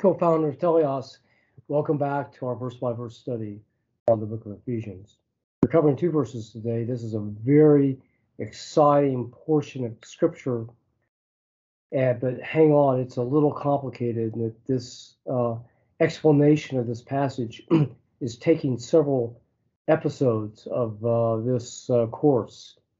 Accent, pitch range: American, 115-150 Hz